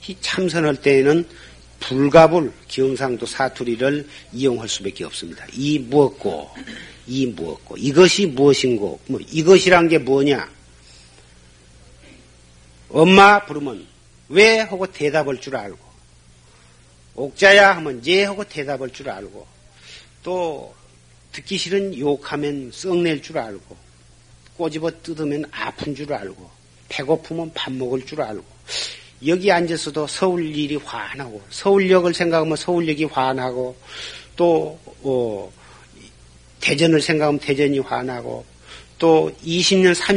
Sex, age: male, 50-69